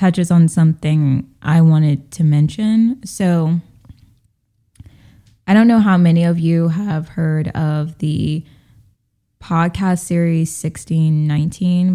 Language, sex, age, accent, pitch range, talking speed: English, female, 10-29, American, 150-180 Hz, 110 wpm